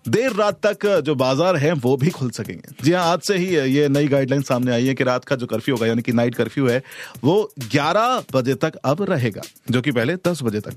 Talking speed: 245 wpm